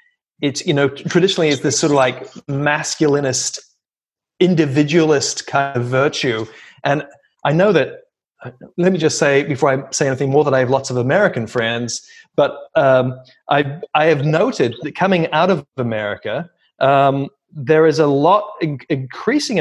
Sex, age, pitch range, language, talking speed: male, 30-49, 135-170 Hz, English, 155 wpm